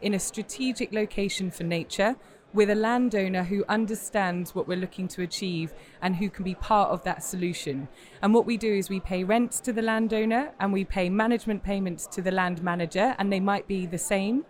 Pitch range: 180-220 Hz